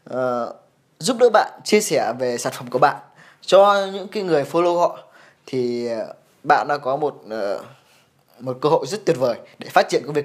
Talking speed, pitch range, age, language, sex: 205 wpm, 140-190 Hz, 20-39, English, male